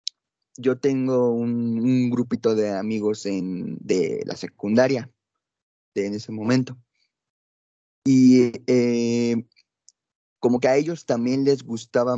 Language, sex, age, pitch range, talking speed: Spanish, male, 20-39, 115-135 Hz, 120 wpm